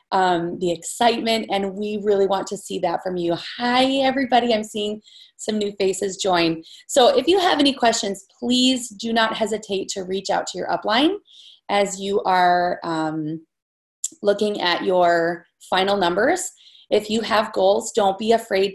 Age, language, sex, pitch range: 30-49, English, female, 185-245 Hz